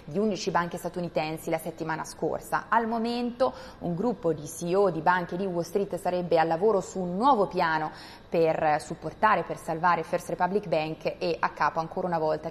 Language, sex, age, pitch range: Italian, female, 20-39, 160-200 Hz